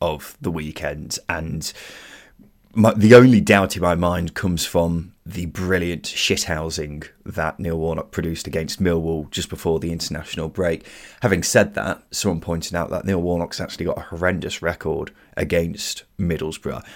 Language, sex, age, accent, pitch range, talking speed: English, male, 20-39, British, 85-105 Hz, 155 wpm